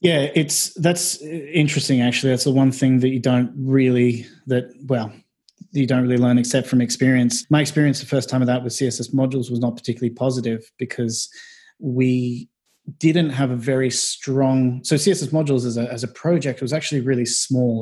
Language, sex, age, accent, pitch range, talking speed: English, male, 20-39, Australian, 120-140 Hz, 185 wpm